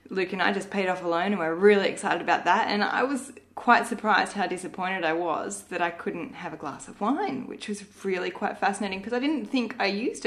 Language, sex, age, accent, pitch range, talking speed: English, female, 20-39, Australian, 185-230 Hz, 245 wpm